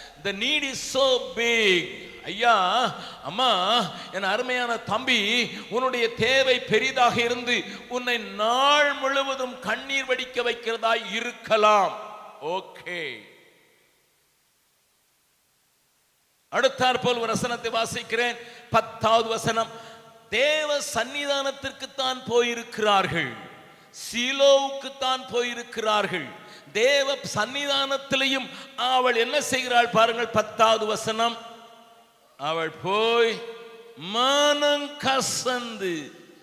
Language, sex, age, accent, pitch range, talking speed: Tamil, male, 50-69, native, 230-275 Hz, 65 wpm